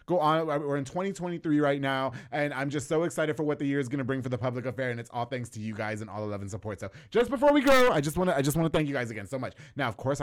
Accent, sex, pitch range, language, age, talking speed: American, male, 130-180 Hz, English, 20-39, 335 wpm